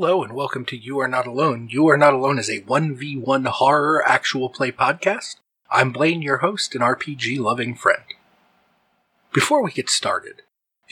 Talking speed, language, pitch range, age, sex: 170 wpm, English, 115-155 Hz, 30-49, male